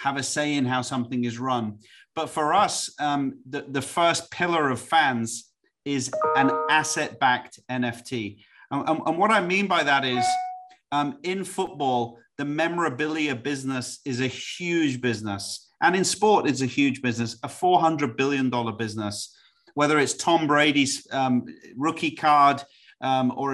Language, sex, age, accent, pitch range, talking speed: English, male, 30-49, British, 130-165 Hz, 160 wpm